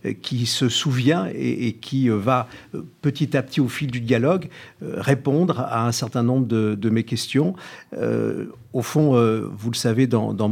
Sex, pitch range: male, 115-140 Hz